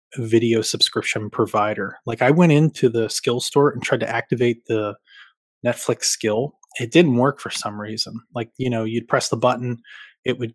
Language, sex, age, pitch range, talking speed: English, male, 20-39, 115-125 Hz, 180 wpm